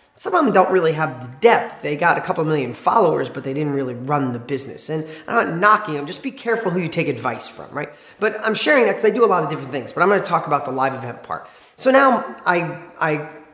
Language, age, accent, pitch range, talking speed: English, 30-49, American, 140-185 Hz, 270 wpm